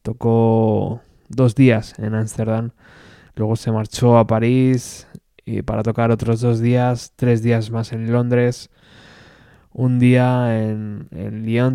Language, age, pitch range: Spanish, 20-39, 115-130 Hz